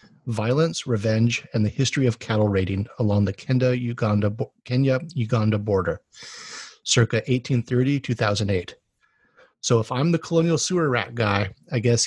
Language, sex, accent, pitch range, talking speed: English, male, American, 115-135 Hz, 120 wpm